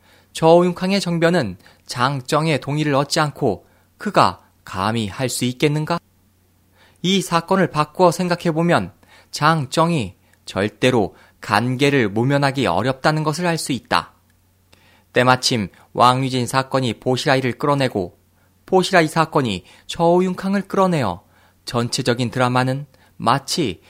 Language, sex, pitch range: Korean, male, 100-160 Hz